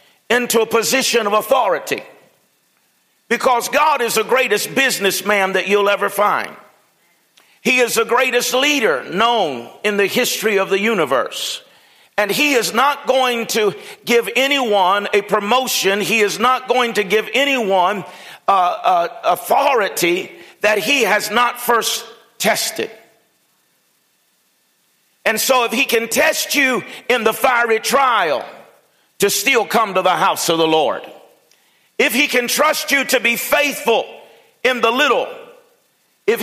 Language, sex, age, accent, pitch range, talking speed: English, male, 50-69, American, 210-265 Hz, 140 wpm